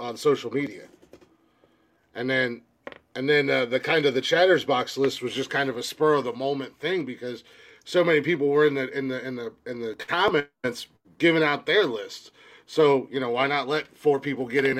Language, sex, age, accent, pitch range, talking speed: English, male, 30-49, American, 130-180 Hz, 215 wpm